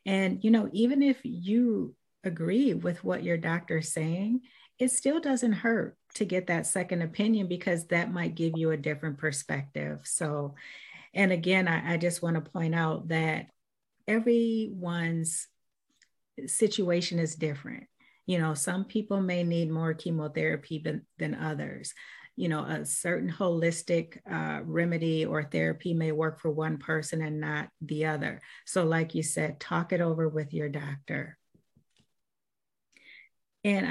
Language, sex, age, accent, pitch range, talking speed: English, female, 40-59, American, 155-190 Hz, 150 wpm